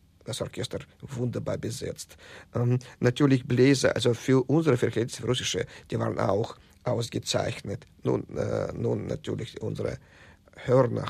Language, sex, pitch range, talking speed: German, male, 115-150 Hz, 120 wpm